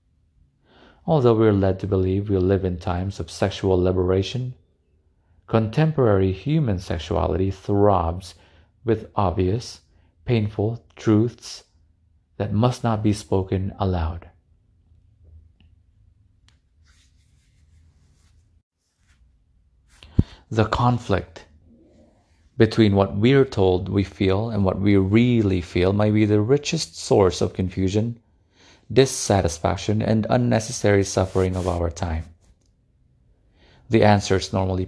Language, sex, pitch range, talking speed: English, male, 90-105 Hz, 100 wpm